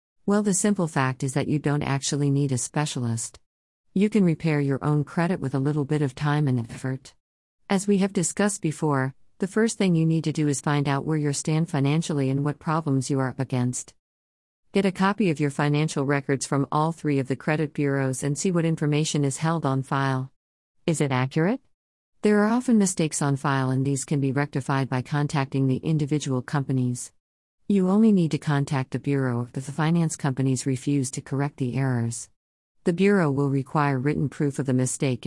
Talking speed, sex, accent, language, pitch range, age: 200 wpm, female, American, English, 130-155 Hz, 50-69